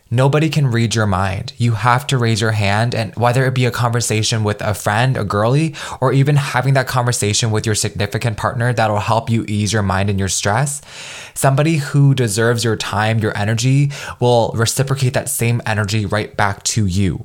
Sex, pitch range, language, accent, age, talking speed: male, 105-135 Hz, English, American, 20-39, 195 wpm